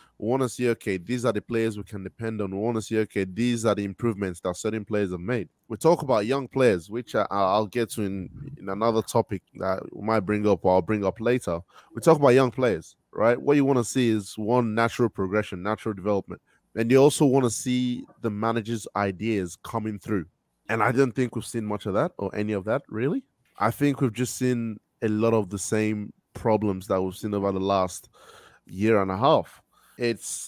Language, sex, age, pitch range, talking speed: English, male, 20-39, 100-120 Hz, 225 wpm